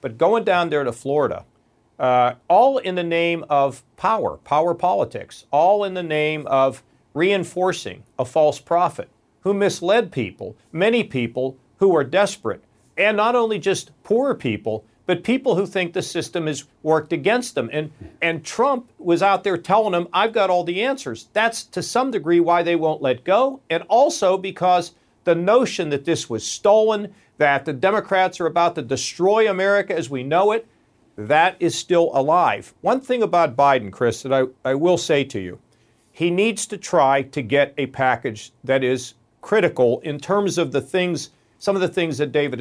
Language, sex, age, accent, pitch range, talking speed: English, male, 50-69, American, 135-190 Hz, 180 wpm